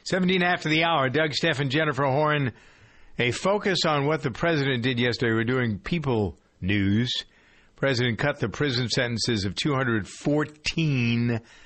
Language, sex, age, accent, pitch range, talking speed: English, male, 50-69, American, 100-125 Hz, 145 wpm